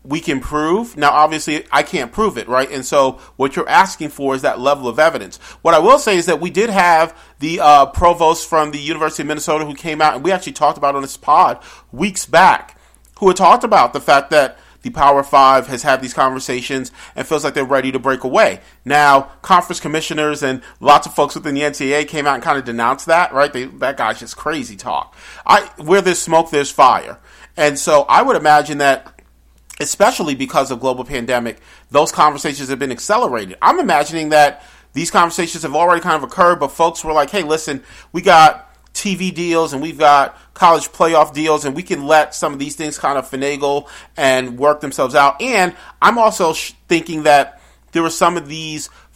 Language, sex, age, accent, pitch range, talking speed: English, male, 40-59, American, 140-160 Hz, 210 wpm